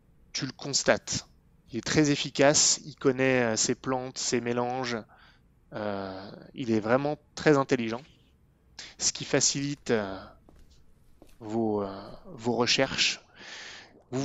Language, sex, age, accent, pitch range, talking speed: French, male, 20-39, French, 115-140 Hz, 120 wpm